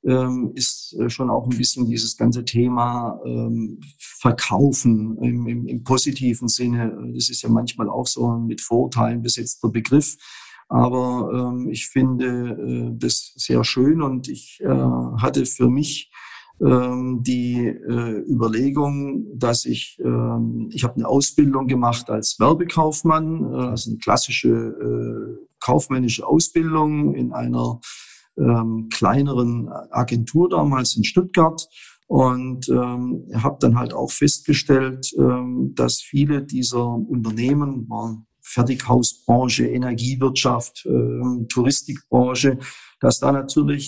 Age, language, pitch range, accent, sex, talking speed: 50-69, German, 115-135 Hz, German, male, 120 wpm